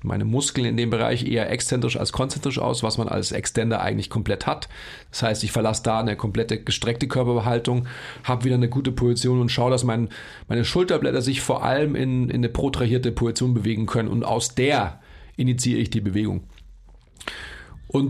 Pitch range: 115-135 Hz